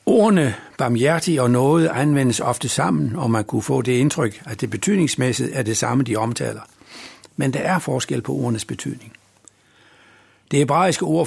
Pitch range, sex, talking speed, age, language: 110-155 Hz, male, 165 wpm, 60-79, Danish